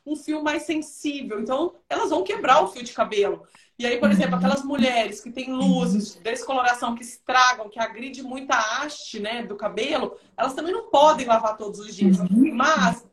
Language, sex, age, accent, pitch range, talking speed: Portuguese, female, 30-49, Brazilian, 230-285 Hz, 185 wpm